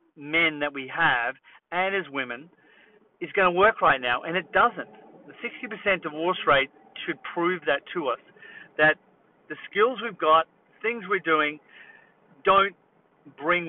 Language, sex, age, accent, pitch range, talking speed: English, male, 40-59, Australian, 160-215 Hz, 155 wpm